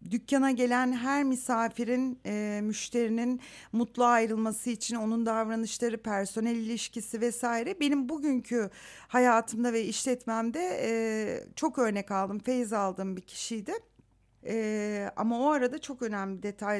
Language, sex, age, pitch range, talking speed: Turkish, female, 60-79, 215-255 Hz, 125 wpm